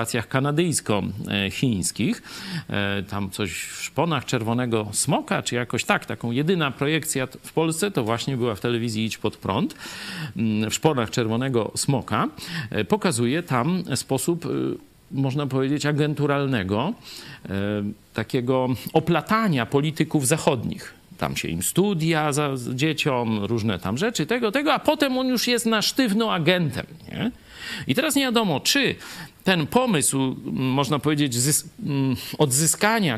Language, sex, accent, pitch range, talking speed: Polish, male, native, 125-170 Hz, 120 wpm